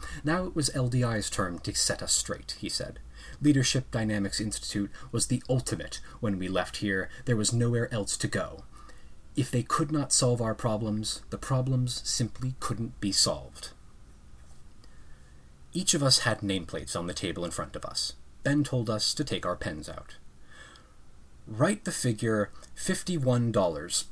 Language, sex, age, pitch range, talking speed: English, male, 30-49, 100-145 Hz, 160 wpm